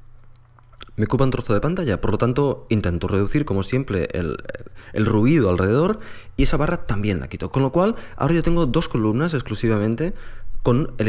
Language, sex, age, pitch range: Spanish, male, 20-39, 105-135 Hz